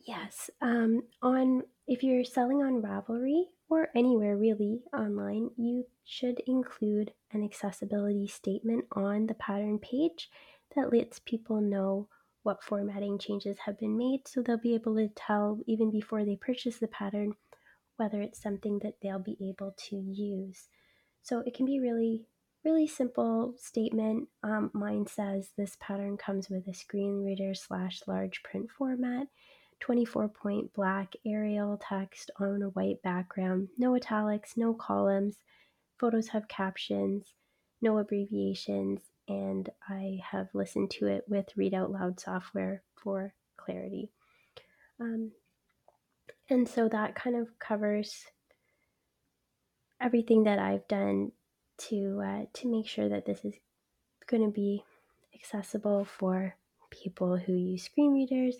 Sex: female